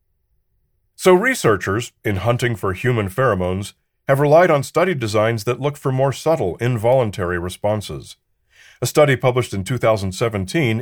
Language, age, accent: English, 40-59, American